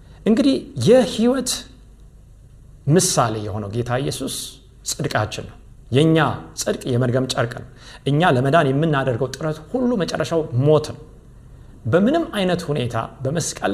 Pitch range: 120-165 Hz